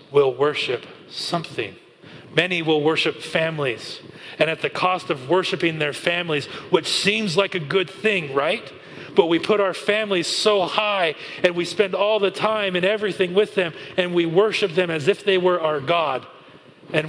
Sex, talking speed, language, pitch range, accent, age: male, 175 wpm, English, 155-195 Hz, American, 40-59